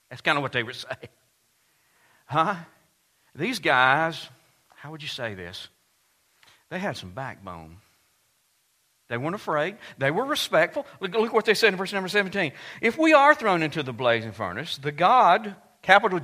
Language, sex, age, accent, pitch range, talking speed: English, male, 50-69, American, 140-205 Hz, 165 wpm